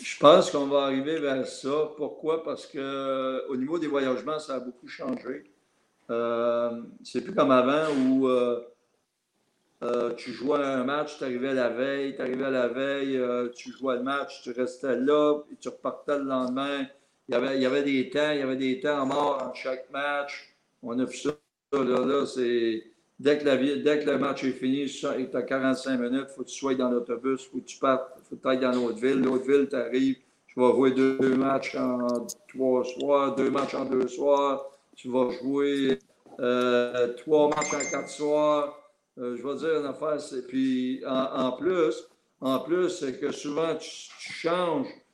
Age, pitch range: 60-79, 125-145 Hz